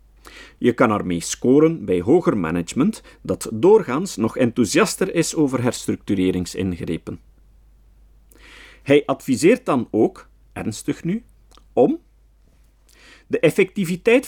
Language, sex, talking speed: Dutch, male, 95 wpm